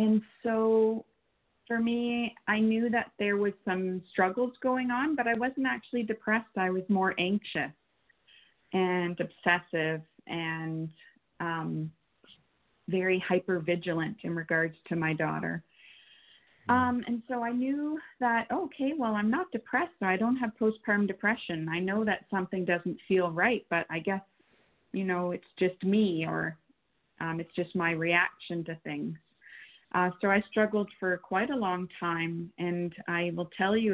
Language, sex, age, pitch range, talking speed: English, female, 30-49, 175-225 Hz, 150 wpm